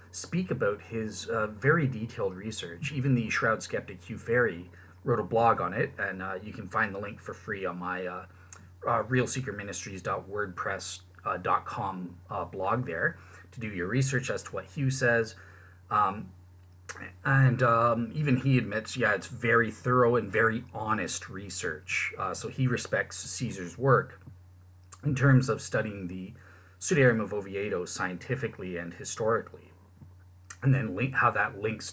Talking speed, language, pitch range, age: 150 wpm, English, 95-125 Hz, 30-49